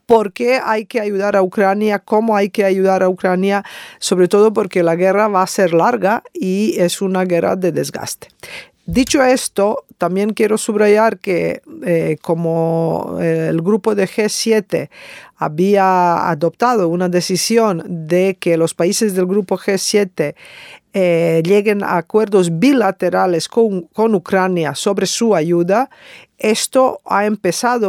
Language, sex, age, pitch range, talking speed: Spanish, female, 50-69, 175-215 Hz, 140 wpm